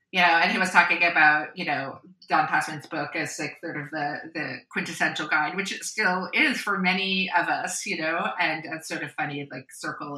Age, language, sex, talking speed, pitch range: 30-49, English, female, 220 wpm, 155-190 Hz